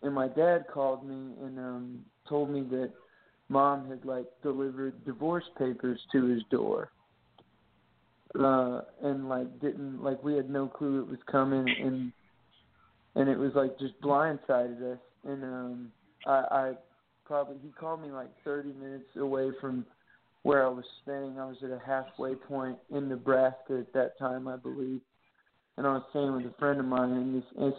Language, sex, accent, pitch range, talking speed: English, male, American, 125-140 Hz, 175 wpm